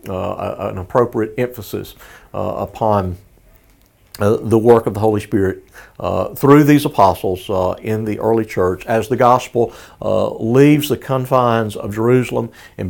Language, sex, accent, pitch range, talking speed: English, male, American, 105-130 Hz, 150 wpm